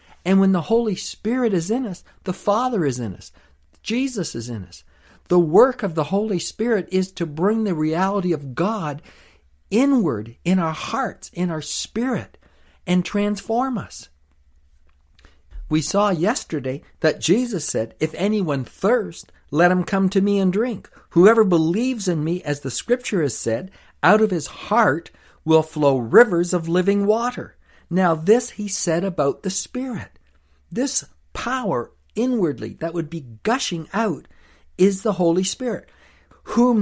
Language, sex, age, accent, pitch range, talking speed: English, male, 60-79, American, 155-215 Hz, 155 wpm